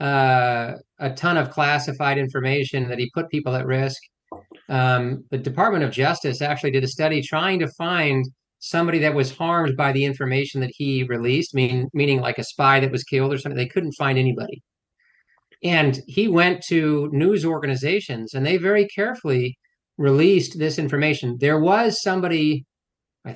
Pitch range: 130-160 Hz